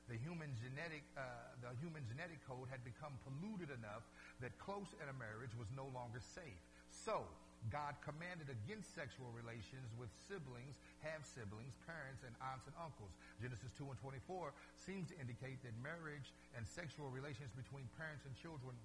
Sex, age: male, 60-79